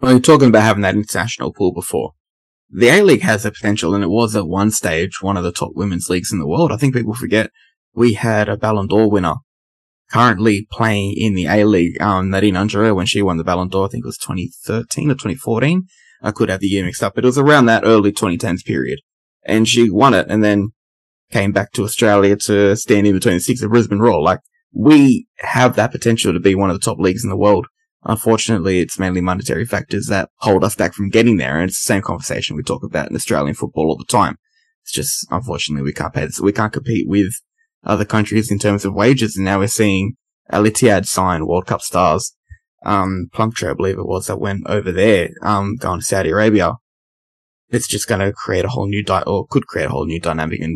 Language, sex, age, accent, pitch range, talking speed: English, male, 20-39, Australian, 95-115 Hz, 230 wpm